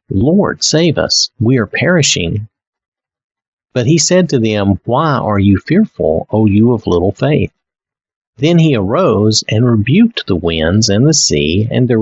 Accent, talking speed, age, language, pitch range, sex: American, 160 wpm, 50-69, English, 105-140 Hz, male